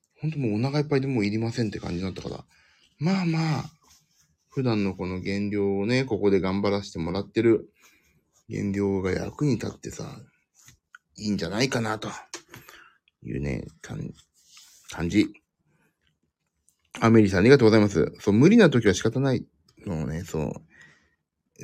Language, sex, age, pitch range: Japanese, male, 30-49, 95-165 Hz